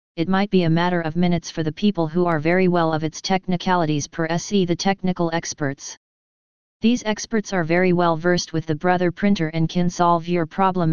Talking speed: 205 wpm